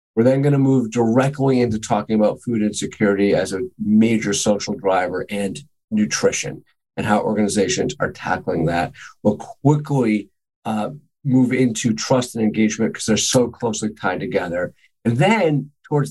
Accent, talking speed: American, 155 wpm